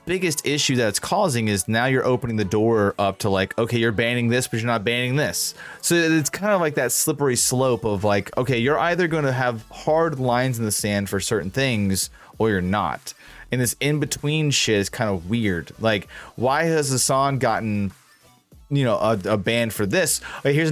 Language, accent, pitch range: English, American, 105-135 Hz